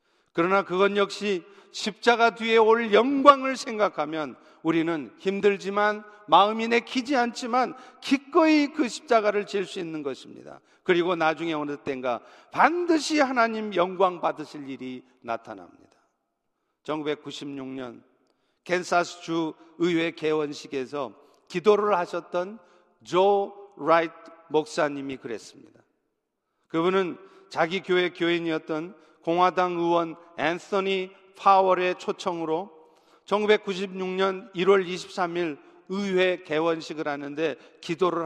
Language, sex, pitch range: Korean, male, 165-210 Hz